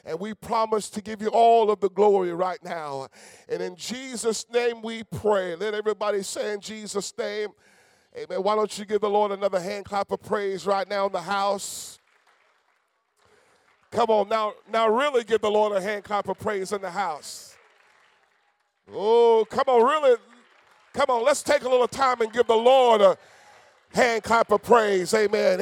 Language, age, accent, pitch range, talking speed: English, 40-59, American, 210-265 Hz, 185 wpm